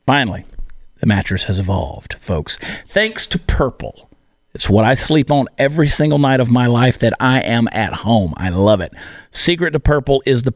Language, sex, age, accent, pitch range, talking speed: English, male, 50-69, American, 110-140 Hz, 190 wpm